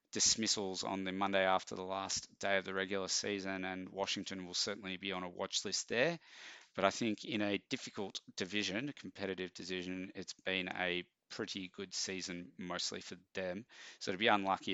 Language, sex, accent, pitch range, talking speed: English, male, Australian, 95-105 Hz, 185 wpm